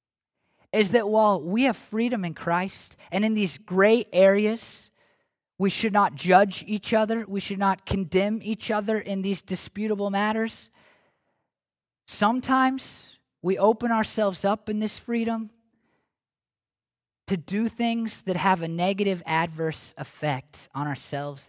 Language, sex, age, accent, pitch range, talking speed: English, male, 20-39, American, 185-235 Hz, 135 wpm